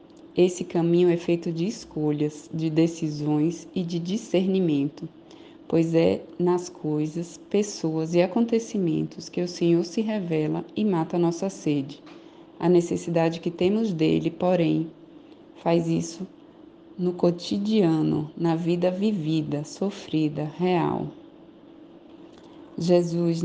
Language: Portuguese